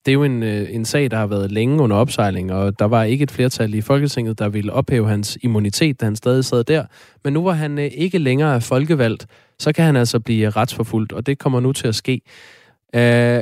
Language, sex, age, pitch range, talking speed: Danish, male, 20-39, 110-140 Hz, 230 wpm